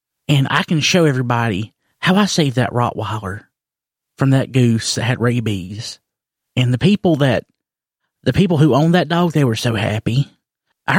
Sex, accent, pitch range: male, American, 115-145 Hz